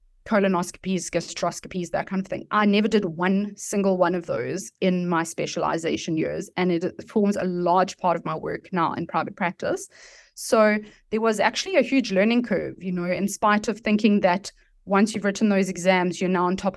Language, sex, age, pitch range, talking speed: English, female, 20-39, 180-210 Hz, 195 wpm